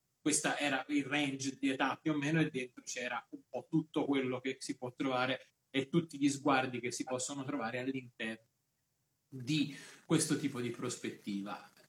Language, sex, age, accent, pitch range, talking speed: Italian, male, 30-49, native, 130-175 Hz, 170 wpm